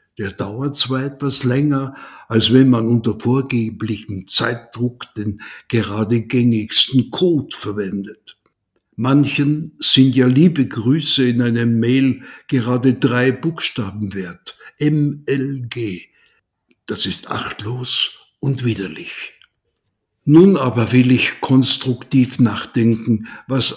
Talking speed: 105 wpm